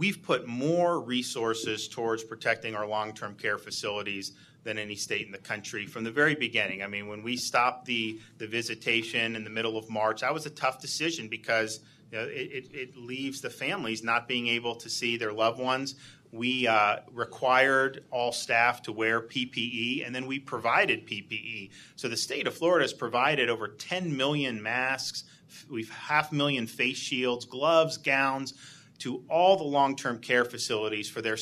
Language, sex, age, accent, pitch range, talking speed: English, male, 40-59, American, 115-135 Hz, 180 wpm